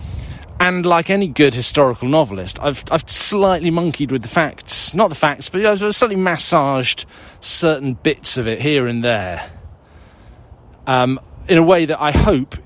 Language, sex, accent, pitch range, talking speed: English, male, British, 95-135 Hz, 165 wpm